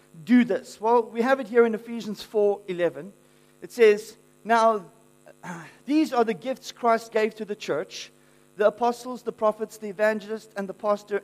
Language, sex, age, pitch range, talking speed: English, male, 40-59, 175-240 Hz, 165 wpm